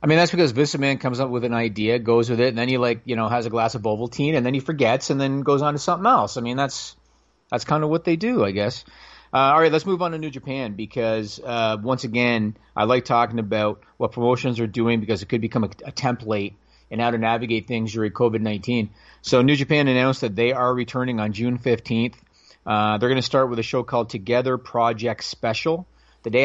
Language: English